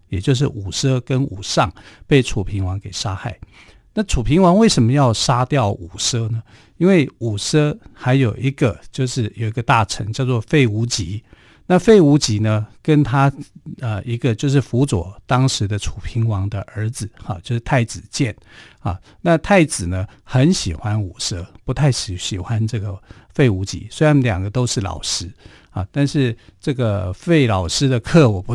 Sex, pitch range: male, 100-135 Hz